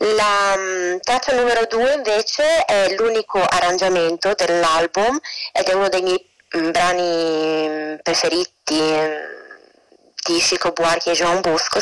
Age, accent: 20-39, native